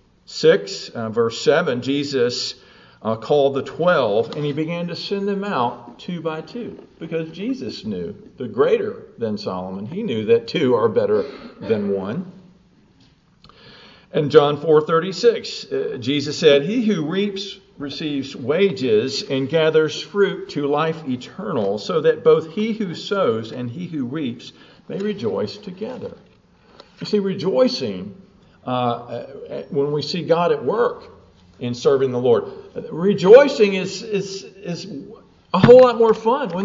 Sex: male